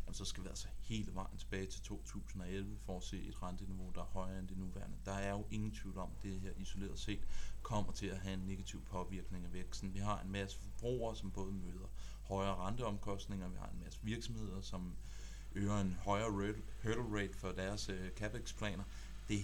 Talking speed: 215 wpm